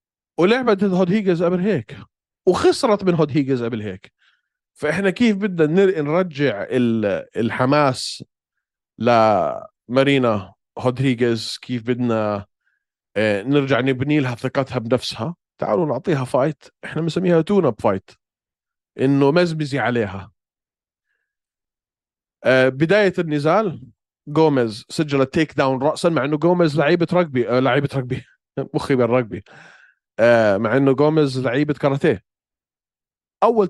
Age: 30-49